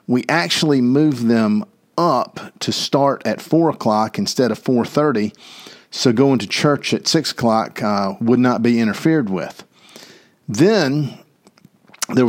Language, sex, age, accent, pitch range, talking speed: English, male, 50-69, American, 110-150 Hz, 130 wpm